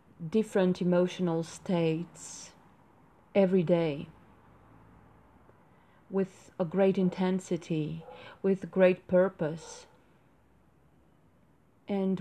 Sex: female